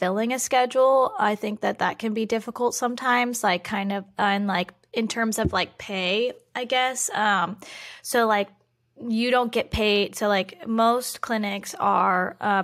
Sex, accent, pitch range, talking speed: female, American, 195-230 Hz, 170 wpm